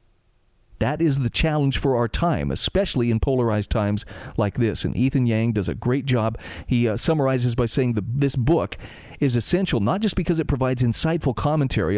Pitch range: 115-150 Hz